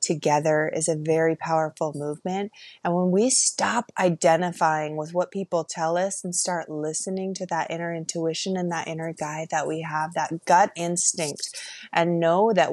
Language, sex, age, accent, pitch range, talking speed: English, female, 20-39, American, 165-210 Hz, 170 wpm